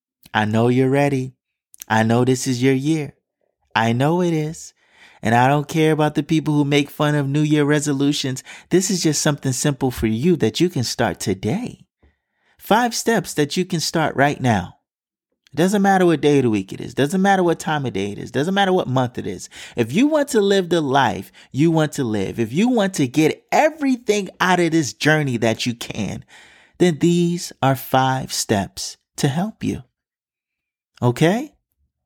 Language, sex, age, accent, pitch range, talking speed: English, male, 30-49, American, 120-175 Hz, 200 wpm